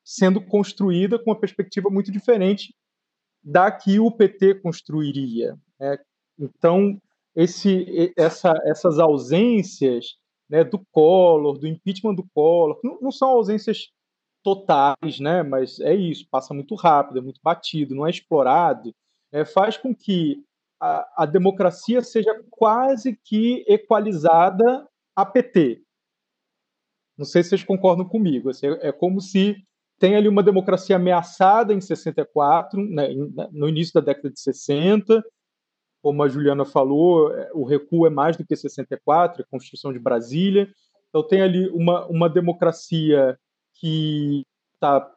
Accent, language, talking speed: Brazilian, Portuguese, 135 wpm